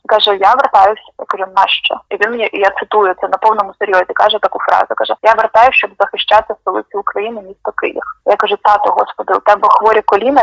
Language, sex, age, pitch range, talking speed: Czech, female, 20-39, 190-225 Hz, 205 wpm